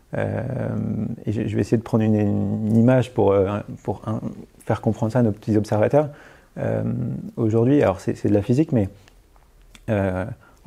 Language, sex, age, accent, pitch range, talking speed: French, male, 30-49, French, 105-125 Hz, 175 wpm